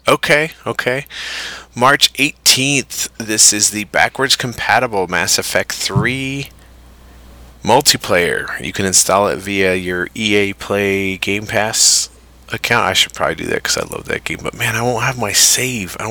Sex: male